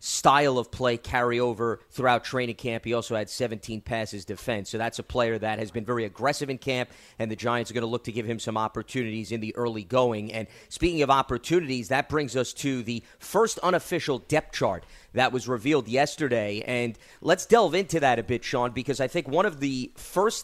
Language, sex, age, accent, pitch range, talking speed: English, male, 30-49, American, 120-150 Hz, 215 wpm